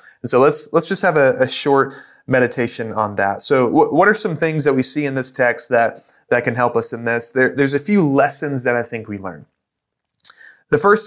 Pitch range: 125-165 Hz